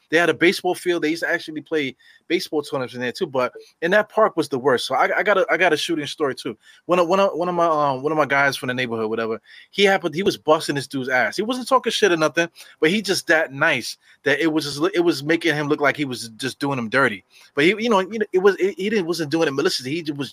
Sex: male